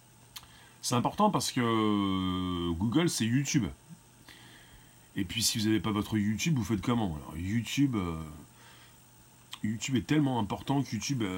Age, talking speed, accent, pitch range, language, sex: 40-59, 135 wpm, French, 100-130 Hz, French, male